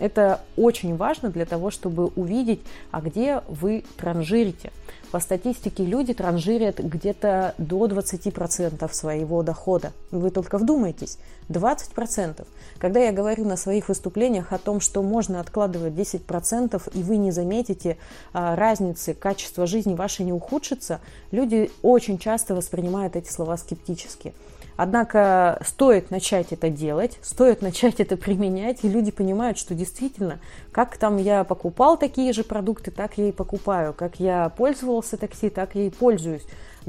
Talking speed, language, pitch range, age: 140 wpm, Russian, 170-215 Hz, 30-49